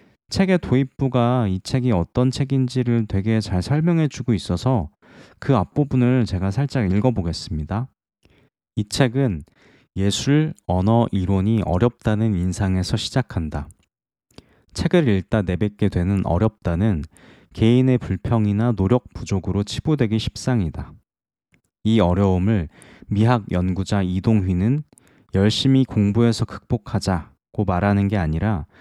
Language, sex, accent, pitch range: Korean, male, native, 90-125 Hz